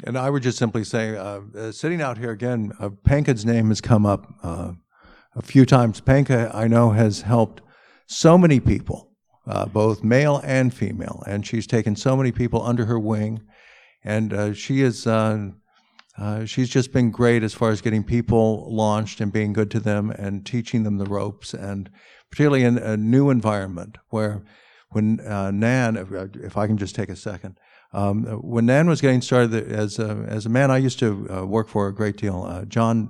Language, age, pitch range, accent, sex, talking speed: English, 60-79, 105-120 Hz, American, male, 200 wpm